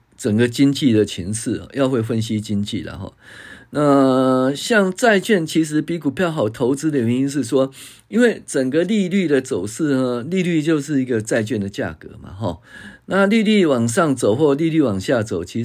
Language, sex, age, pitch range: Chinese, male, 50-69, 120-175 Hz